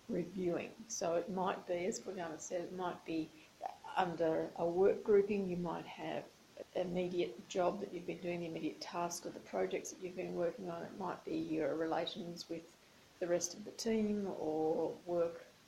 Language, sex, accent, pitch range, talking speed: English, female, Australian, 175-210 Hz, 190 wpm